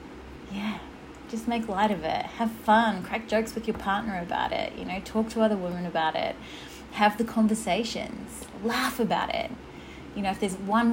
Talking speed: 185 wpm